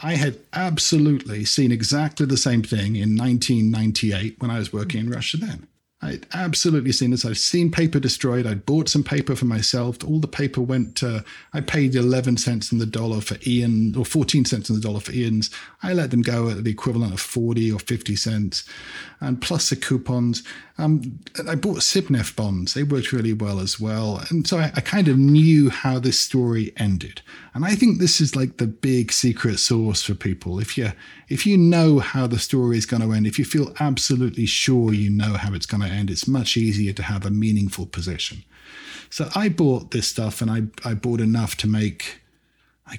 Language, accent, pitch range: English, British, 110-140 Hz